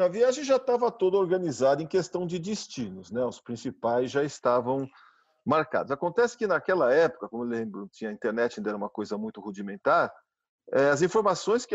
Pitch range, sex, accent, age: 135-215 Hz, male, Brazilian, 40-59